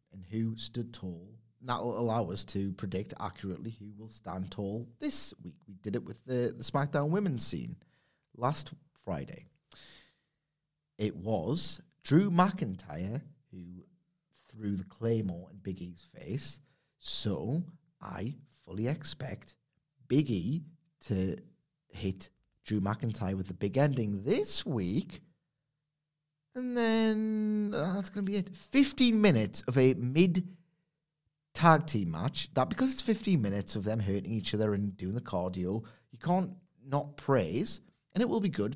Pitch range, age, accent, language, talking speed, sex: 105-170 Hz, 30-49, British, English, 145 wpm, male